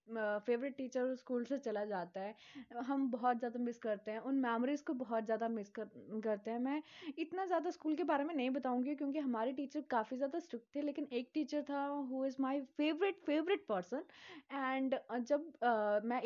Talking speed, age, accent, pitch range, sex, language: 185 wpm, 20-39, native, 220-270 Hz, female, Hindi